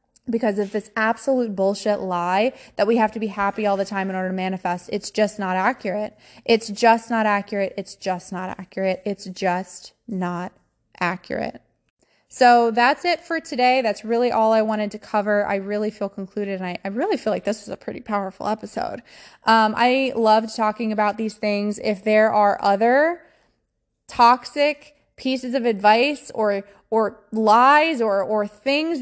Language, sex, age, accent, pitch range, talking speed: English, female, 20-39, American, 200-245 Hz, 175 wpm